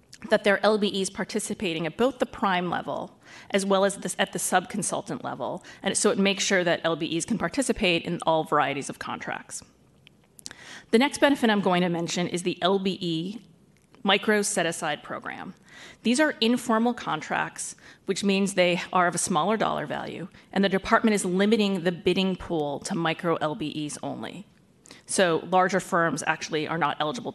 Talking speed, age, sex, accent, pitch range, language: 170 wpm, 30-49, female, American, 170-205 Hz, English